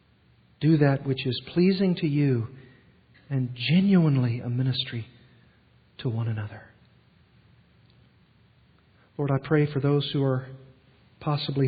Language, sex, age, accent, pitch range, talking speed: English, male, 50-69, American, 120-145 Hz, 115 wpm